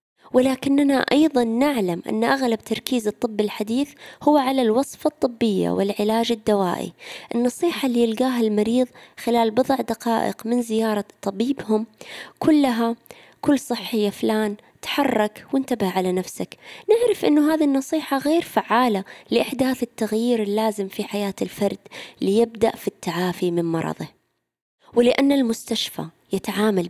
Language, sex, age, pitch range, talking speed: Arabic, female, 20-39, 200-255 Hz, 115 wpm